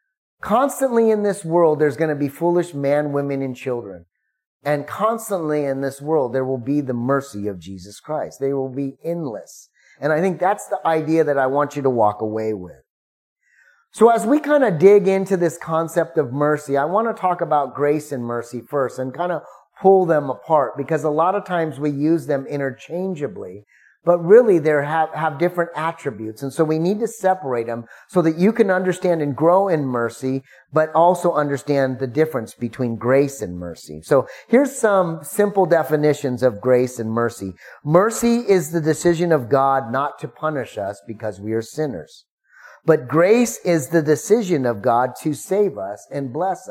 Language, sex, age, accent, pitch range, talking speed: English, male, 30-49, American, 130-175 Hz, 185 wpm